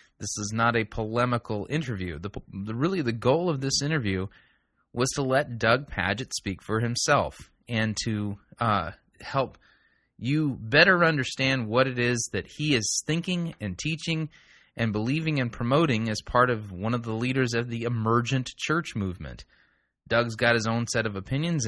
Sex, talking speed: male, 170 wpm